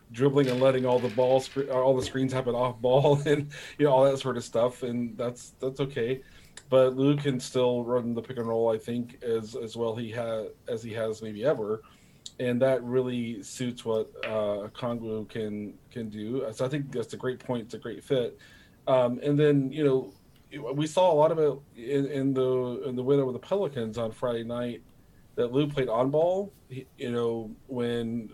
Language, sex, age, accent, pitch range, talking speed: English, male, 30-49, American, 115-135 Hz, 210 wpm